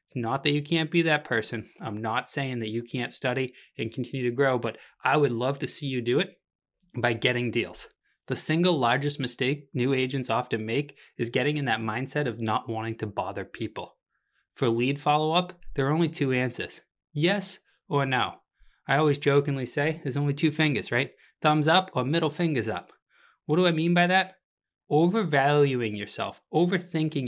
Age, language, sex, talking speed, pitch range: 20-39, English, male, 185 wpm, 125-160 Hz